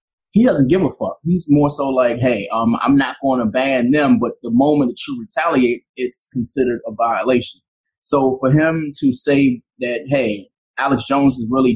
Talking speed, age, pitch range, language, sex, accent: 195 wpm, 20-39, 130-160 Hz, English, male, American